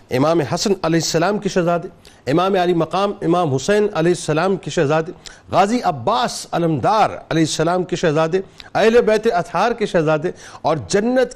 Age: 50-69